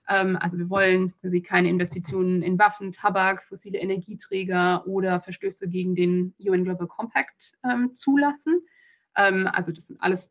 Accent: German